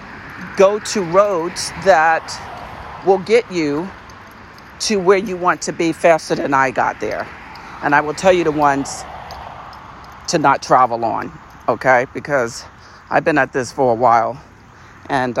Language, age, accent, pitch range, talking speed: English, 50-69, American, 130-195 Hz, 150 wpm